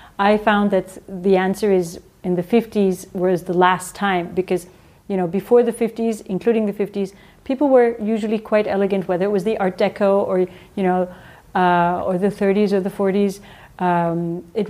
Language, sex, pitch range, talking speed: French, female, 185-220 Hz, 185 wpm